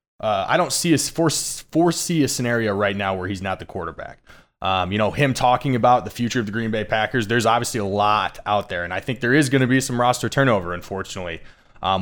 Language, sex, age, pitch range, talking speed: English, male, 20-39, 105-120 Hz, 225 wpm